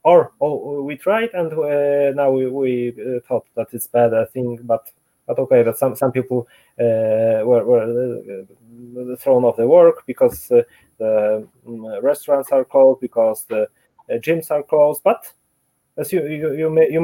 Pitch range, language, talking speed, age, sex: 130-170 Hz, English, 180 wpm, 20-39, male